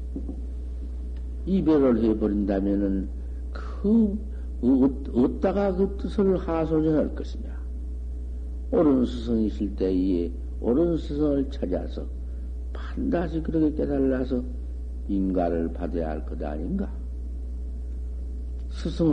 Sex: male